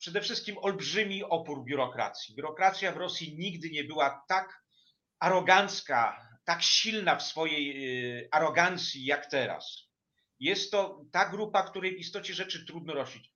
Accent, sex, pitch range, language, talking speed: native, male, 140-185 Hz, Polish, 125 wpm